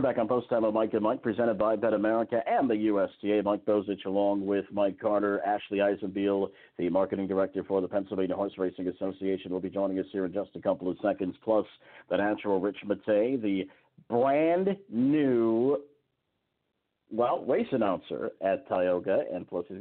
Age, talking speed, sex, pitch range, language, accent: 50-69, 180 wpm, male, 90-105 Hz, English, American